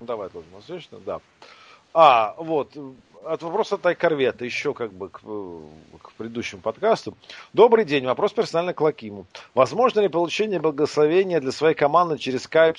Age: 40-59